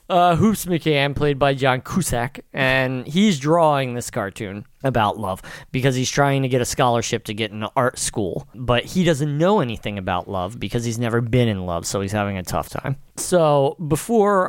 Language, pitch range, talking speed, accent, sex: English, 110-140 Hz, 195 wpm, American, male